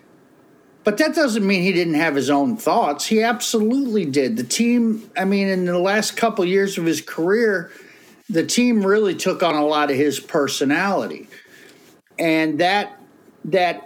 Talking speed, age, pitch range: 170 wpm, 50-69, 145-205 Hz